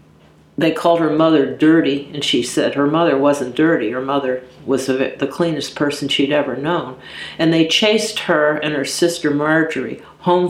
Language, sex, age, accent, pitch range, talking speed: English, female, 50-69, American, 140-170 Hz, 170 wpm